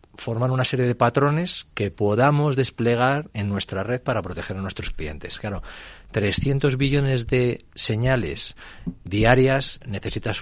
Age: 40-59